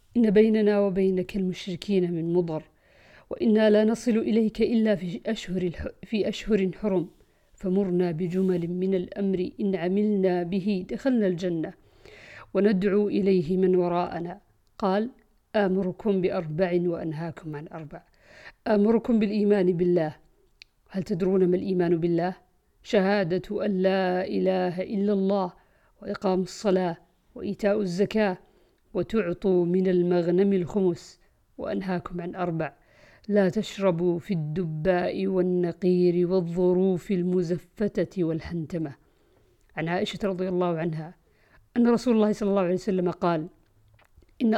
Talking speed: 110 wpm